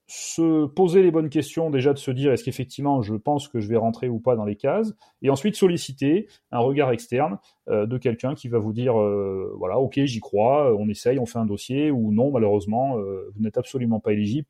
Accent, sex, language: French, male, French